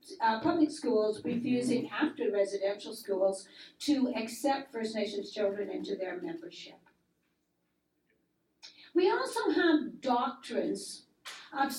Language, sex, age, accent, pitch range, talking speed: English, female, 50-69, American, 220-290 Hz, 100 wpm